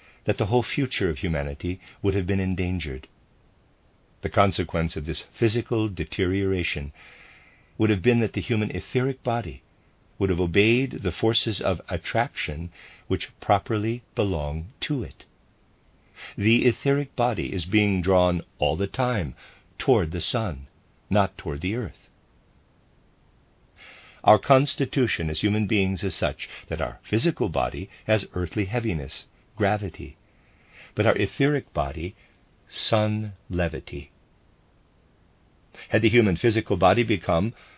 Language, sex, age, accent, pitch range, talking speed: English, male, 50-69, American, 85-110 Hz, 125 wpm